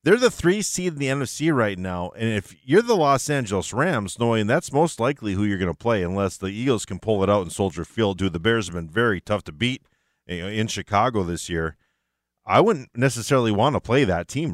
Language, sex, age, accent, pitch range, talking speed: English, male, 40-59, American, 95-135 Hz, 230 wpm